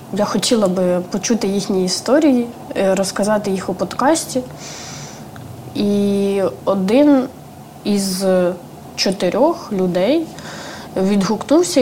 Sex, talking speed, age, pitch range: female, 80 wpm, 20-39, 190-235 Hz